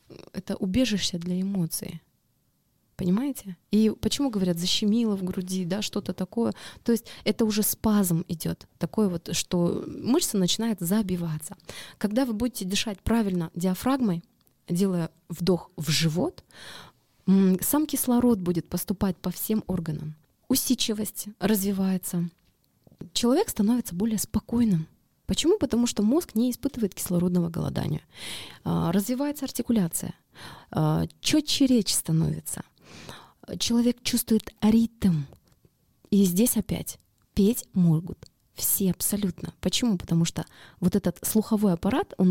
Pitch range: 175-225 Hz